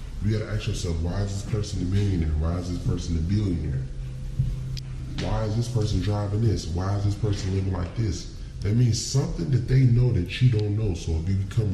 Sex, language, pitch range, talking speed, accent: female, English, 90-125 Hz, 225 wpm, American